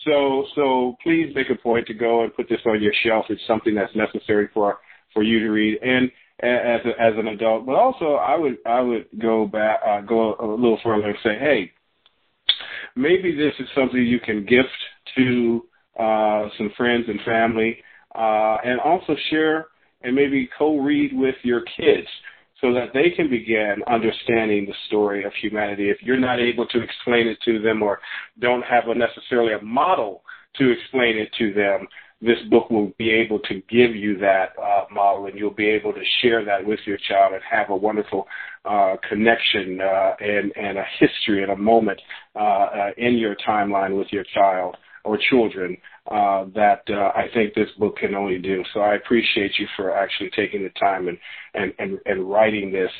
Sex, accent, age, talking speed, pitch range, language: male, American, 40-59, 190 wpm, 100-120 Hz, English